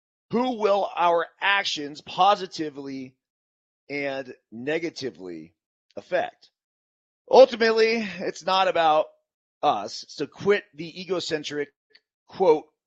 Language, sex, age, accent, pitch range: Japanese, male, 30-49, American, 155-235 Hz